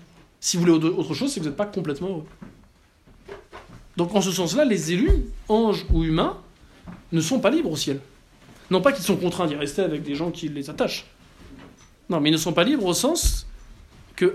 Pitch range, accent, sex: 140-185 Hz, French, male